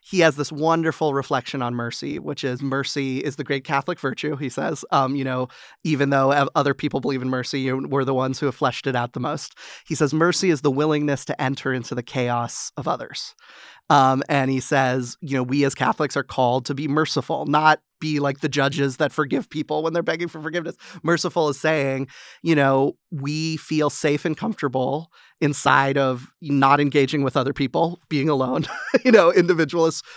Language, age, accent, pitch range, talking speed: English, 30-49, American, 135-155 Hz, 195 wpm